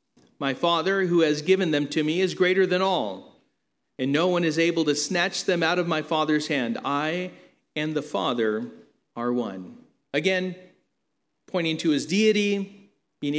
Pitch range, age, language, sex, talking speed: 140-185 Hz, 40-59, English, male, 165 wpm